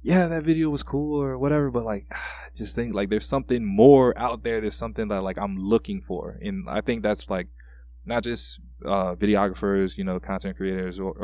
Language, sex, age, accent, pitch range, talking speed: English, male, 20-39, American, 90-110 Hz, 205 wpm